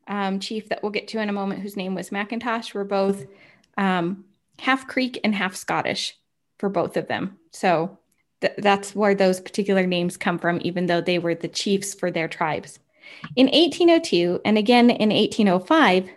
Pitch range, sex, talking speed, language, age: 200-255 Hz, female, 180 wpm, English, 20-39